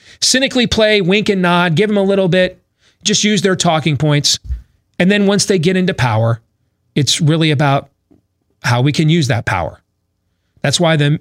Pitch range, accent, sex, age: 110-185 Hz, American, male, 40-59